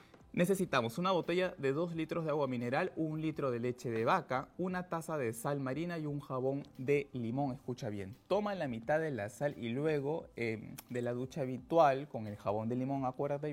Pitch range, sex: 115-150 Hz, male